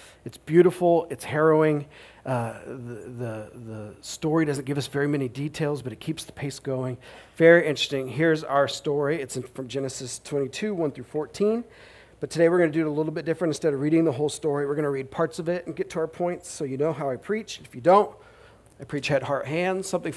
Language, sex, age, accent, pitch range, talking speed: English, male, 40-59, American, 125-170 Hz, 230 wpm